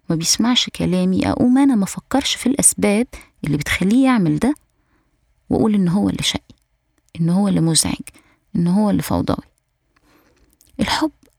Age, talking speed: 20-39, 135 wpm